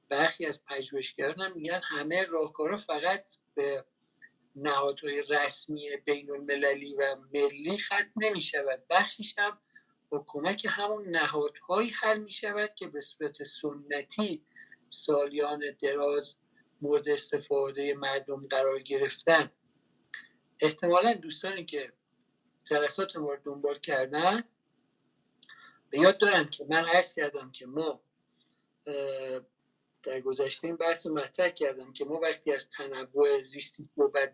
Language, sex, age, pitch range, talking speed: Persian, male, 50-69, 140-205 Hz, 115 wpm